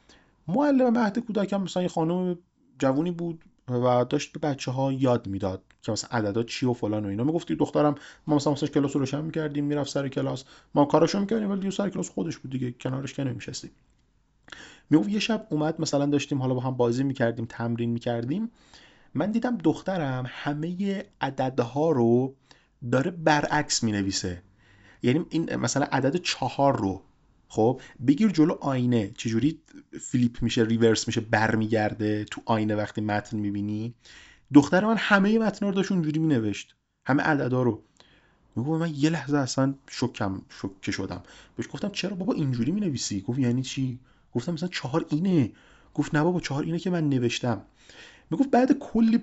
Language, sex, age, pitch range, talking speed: Persian, male, 30-49, 120-165 Hz, 165 wpm